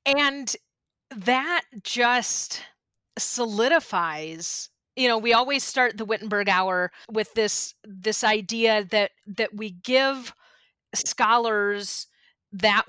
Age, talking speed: 30-49, 100 wpm